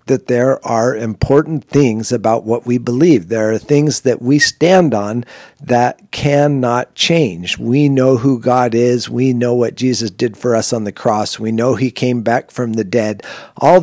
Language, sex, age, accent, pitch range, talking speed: English, male, 50-69, American, 120-145 Hz, 185 wpm